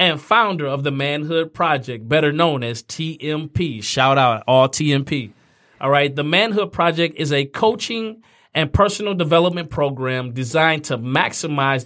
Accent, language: American, English